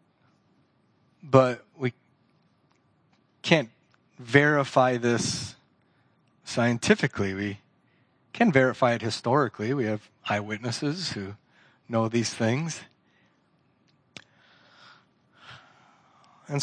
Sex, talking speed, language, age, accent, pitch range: male, 70 wpm, English, 30-49, American, 120-155 Hz